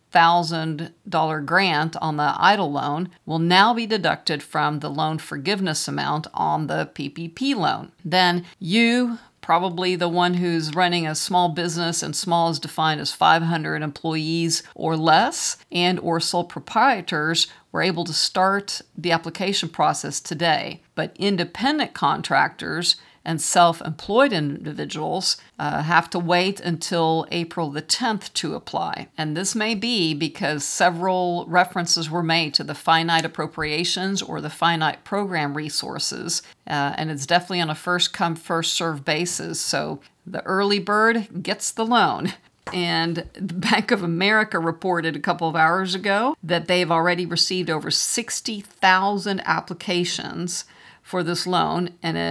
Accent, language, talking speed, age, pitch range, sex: American, English, 140 wpm, 50-69, 160-185 Hz, female